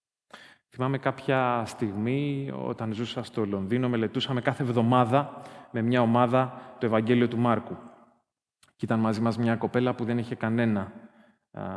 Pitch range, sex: 110-145 Hz, male